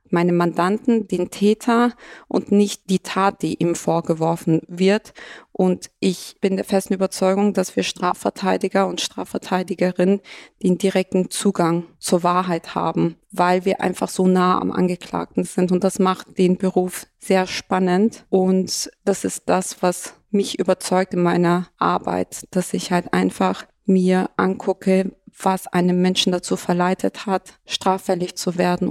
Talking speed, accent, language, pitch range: 145 wpm, German, German, 180-195 Hz